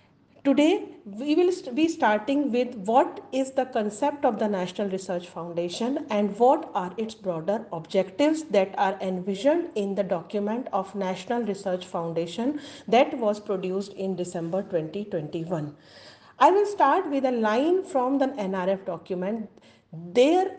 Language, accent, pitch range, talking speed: Gujarati, native, 195-275 Hz, 140 wpm